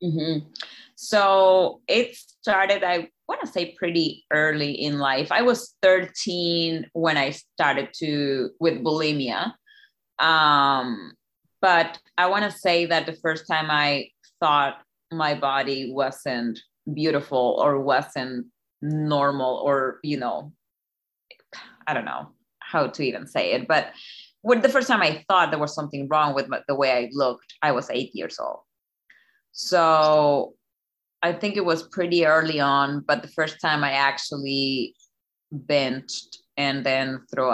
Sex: female